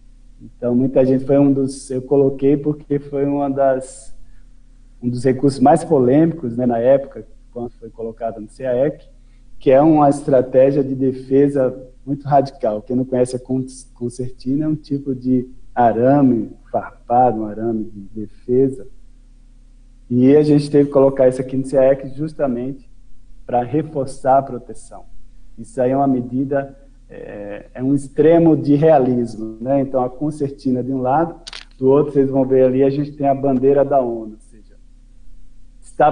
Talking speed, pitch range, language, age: 160 wpm, 125-140 Hz, Portuguese, 40-59